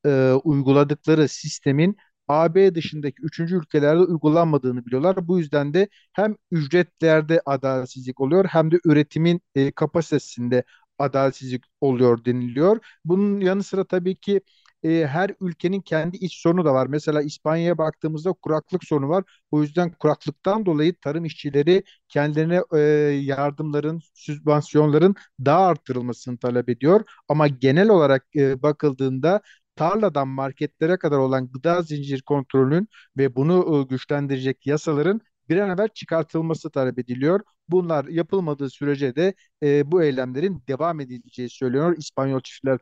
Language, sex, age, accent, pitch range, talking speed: Turkish, male, 50-69, native, 140-170 Hz, 120 wpm